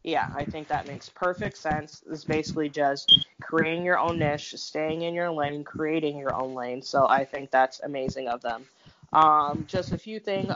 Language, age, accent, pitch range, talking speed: English, 20-39, American, 150-175 Hz, 195 wpm